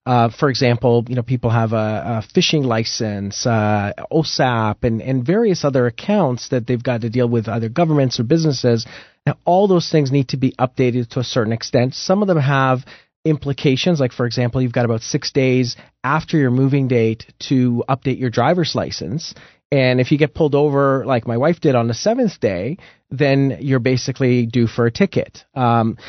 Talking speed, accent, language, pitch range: 195 wpm, American, English, 125-155 Hz